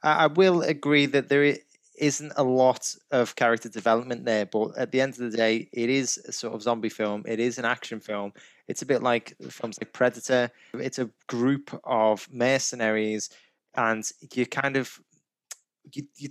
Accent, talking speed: British, 180 wpm